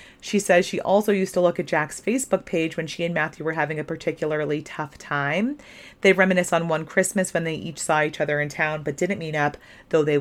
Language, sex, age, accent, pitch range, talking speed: English, female, 30-49, American, 155-195 Hz, 235 wpm